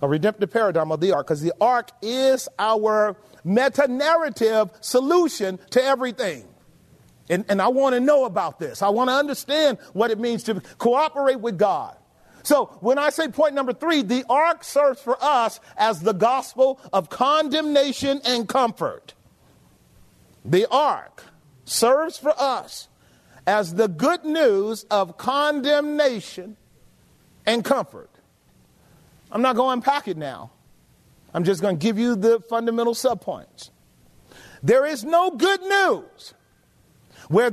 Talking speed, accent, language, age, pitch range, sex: 140 wpm, American, English, 40-59, 205-275 Hz, male